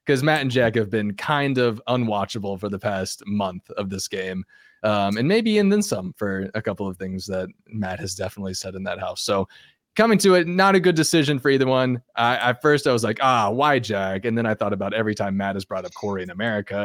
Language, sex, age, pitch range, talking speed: English, male, 20-39, 105-145 Hz, 240 wpm